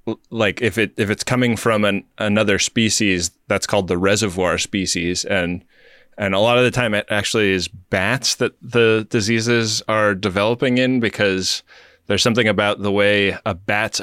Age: 20-39